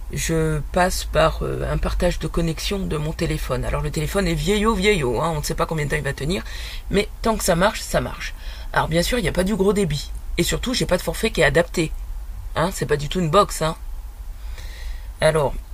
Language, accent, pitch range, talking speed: French, French, 130-200 Hz, 250 wpm